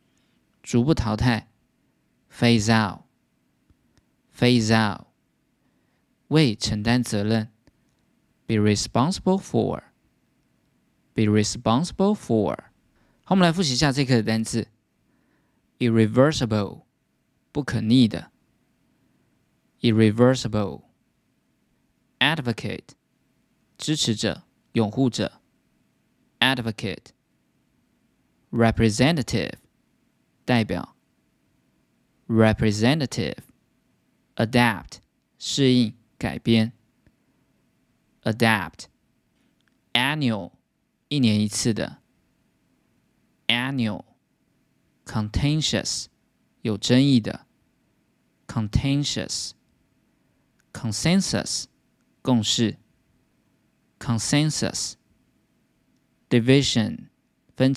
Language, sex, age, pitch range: Chinese, male, 20-39, 110-130 Hz